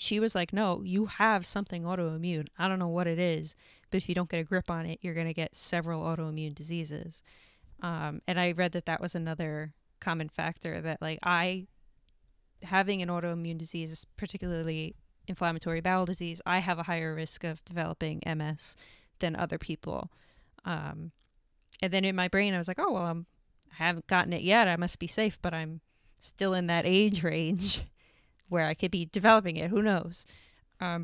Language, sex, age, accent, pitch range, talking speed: English, female, 20-39, American, 165-190 Hz, 190 wpm